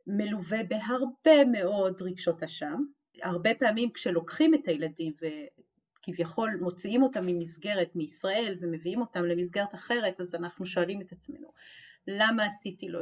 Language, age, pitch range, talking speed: Hebrew, 30-49, 180-250 Hz, 125 wpm